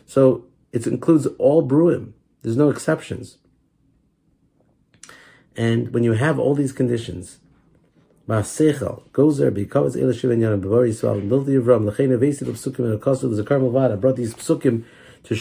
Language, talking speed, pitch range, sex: English, 75 wpm, 115-150 Hz, male